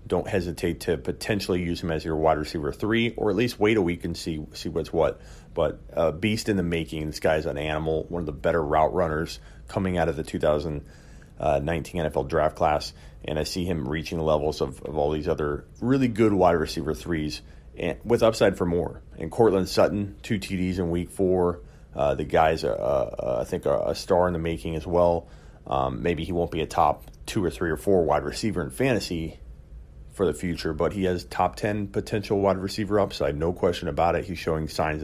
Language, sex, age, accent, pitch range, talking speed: English, male, 30-49, American, 80-95 Hz, 220 wpm